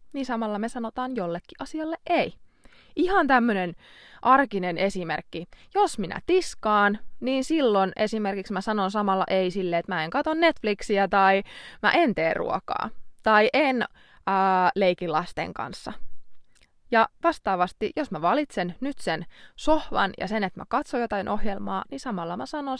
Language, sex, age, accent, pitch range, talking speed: Finnish, female, 20-39, native, 190-270 Hz, 150 wpm